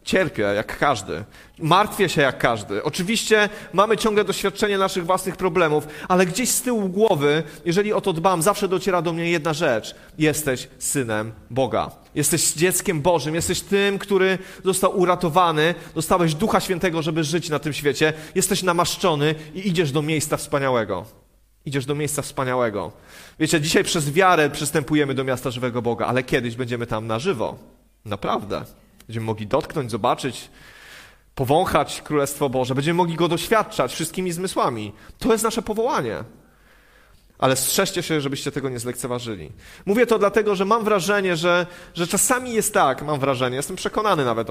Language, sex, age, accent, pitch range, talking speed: Polish, male, 30-49, native, 140-195 Hz, 155 wpm